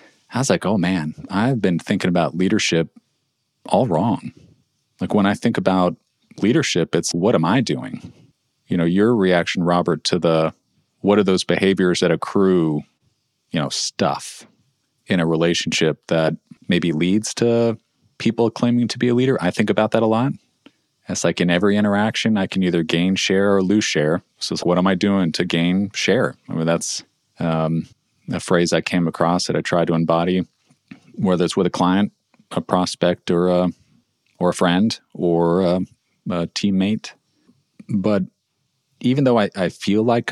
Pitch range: 85-110 Hz